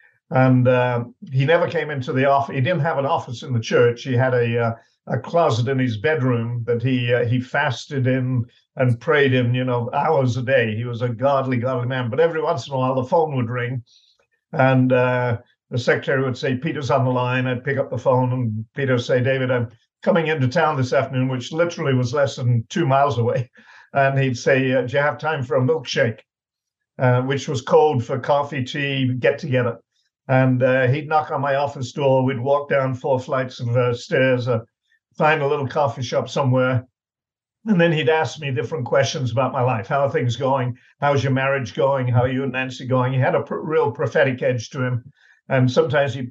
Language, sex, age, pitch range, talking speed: English, male, 50-69, 125-140 Hz, 215 wpm